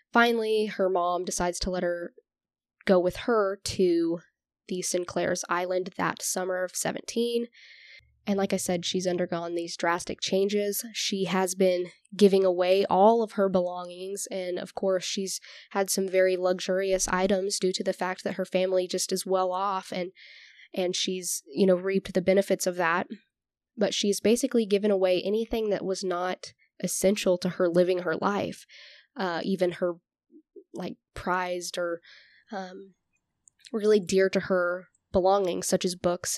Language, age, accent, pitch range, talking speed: English, 10-29, American, 180-195 Hz, 160 wpm